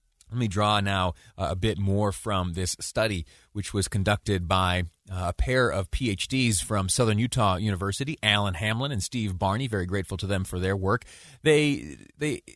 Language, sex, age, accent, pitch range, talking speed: English, male, 30-49, American, 100-130 Hz, 170 wpm